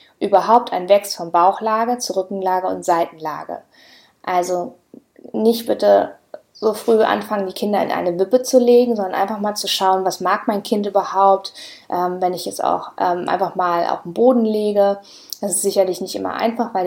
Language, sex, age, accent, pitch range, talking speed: German, female, 20-39, German, 185-225 Hz, 175 wpm